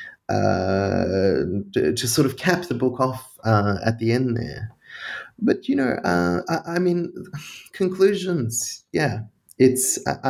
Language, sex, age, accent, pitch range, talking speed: English, male, 20-39, Australian, 110-135 Hz, 145 wpm